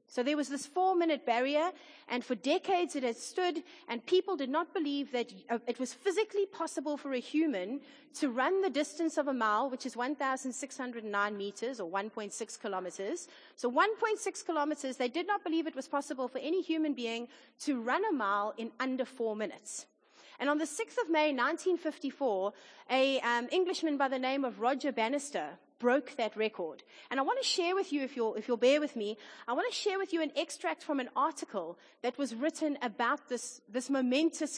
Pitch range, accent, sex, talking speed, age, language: 240-315 Hz, South African, female, 185 wpm, 30-49, English